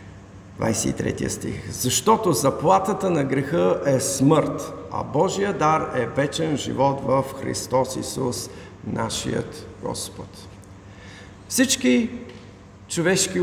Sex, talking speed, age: male, 95 wpm, 50-69